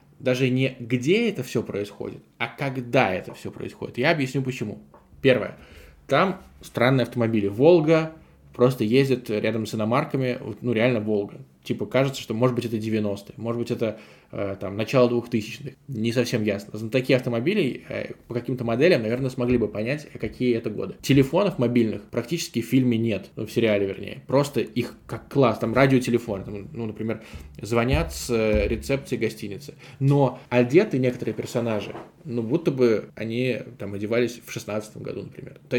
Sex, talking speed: male, 160 wpm